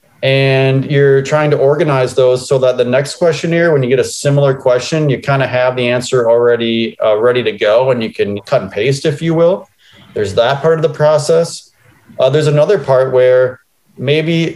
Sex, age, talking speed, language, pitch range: male, 30-49, 200 wpm, English, 125-165 Hz